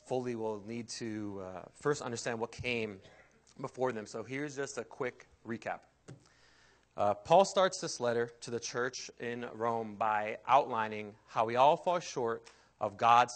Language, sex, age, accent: English, male, 30-49, American